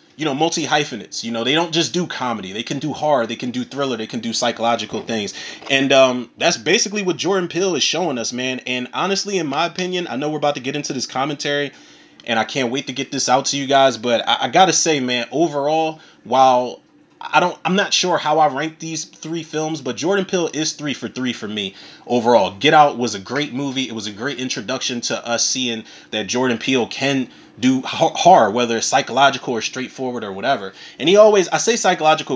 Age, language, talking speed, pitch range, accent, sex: 30-49, English, 225 wpm, 125-165 Hz, American, male